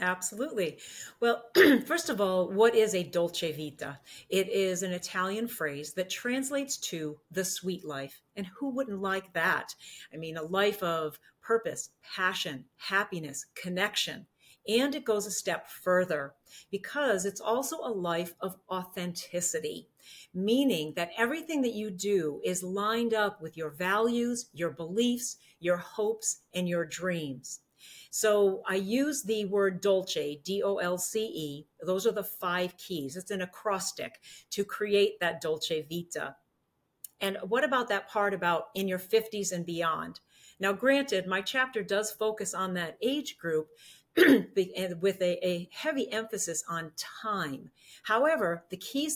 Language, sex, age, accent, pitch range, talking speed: English, female, 40-59, American, 175-220 Hz, 145 wpm